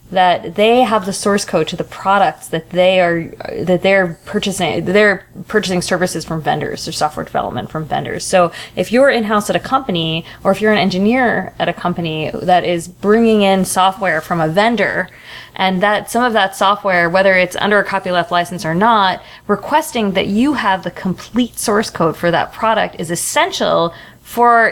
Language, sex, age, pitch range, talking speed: English, female, 20-39, 175-215 Hz, 185 wpm